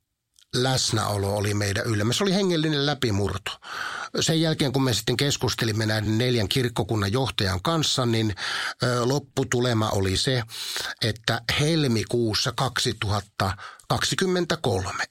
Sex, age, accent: male, 50-69, native